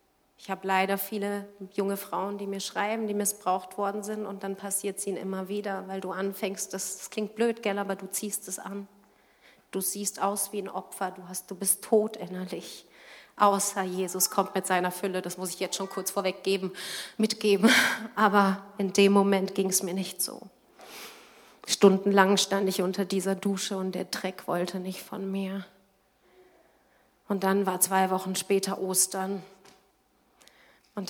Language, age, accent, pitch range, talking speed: German, 30-49, German, 190-210 Hz, 175 wpm